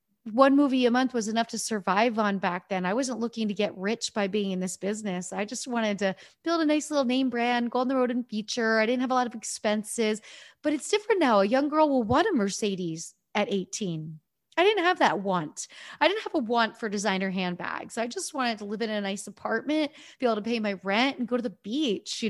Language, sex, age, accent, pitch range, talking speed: English, female, 30-49, American, 195-250 Hz, 250 wpm